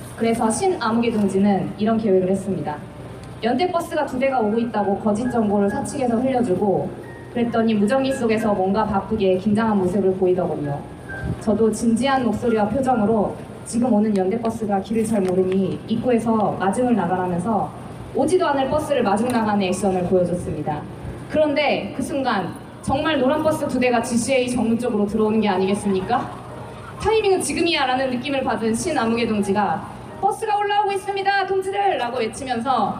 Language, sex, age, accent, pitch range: Korean, female, 20-39, native, 200-265 Hz